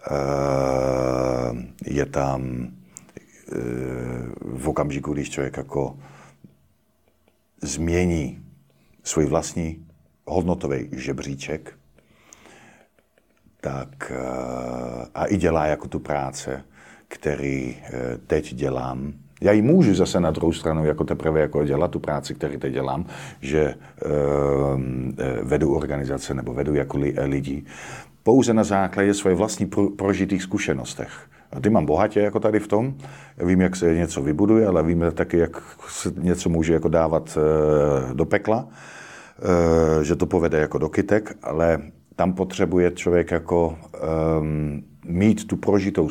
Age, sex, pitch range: 50-69, male, 70-90 Hz